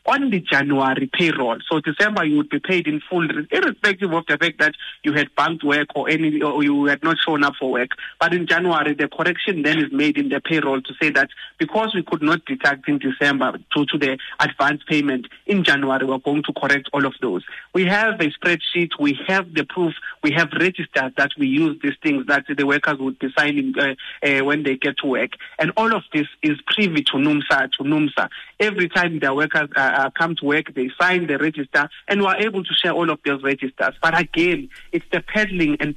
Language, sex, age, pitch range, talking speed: English, male, 30-49, 145-180 Hz, 225 wpm